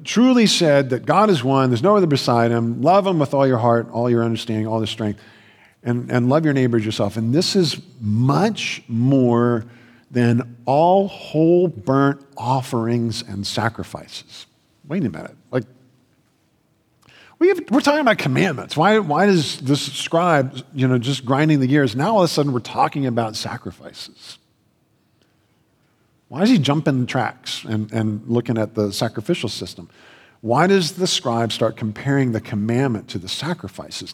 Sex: male